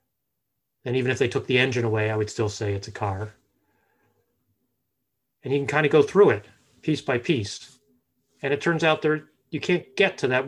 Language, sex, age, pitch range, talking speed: English, male, 30-49, 110-145 Hz, 205 wpm